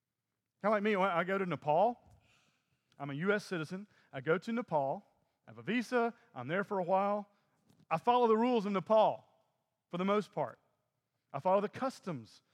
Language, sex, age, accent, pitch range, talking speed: English, male, 40-59, American, 140-205 Hz, 185 wpm